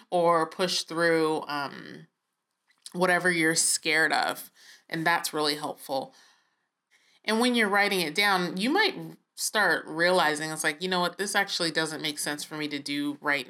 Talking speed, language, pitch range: 165 wpm, English, 155-210 Hz